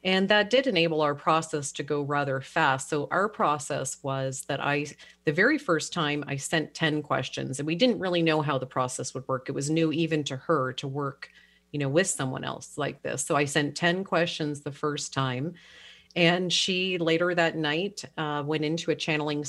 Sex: female